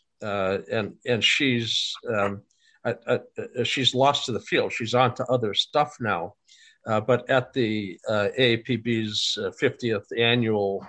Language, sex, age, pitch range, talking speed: English, male, 50-69, 100-125 Hz, 145 wpm